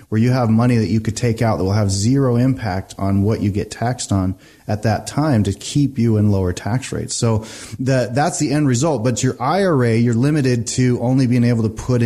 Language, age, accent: English, 30-49, American